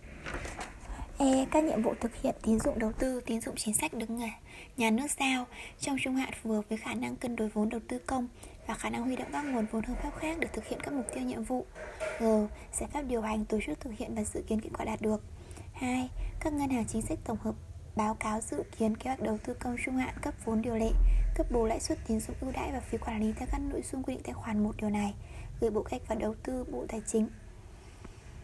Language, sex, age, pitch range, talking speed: Vietnamese, female, 20-39, 215-260 Hz, 260 wpm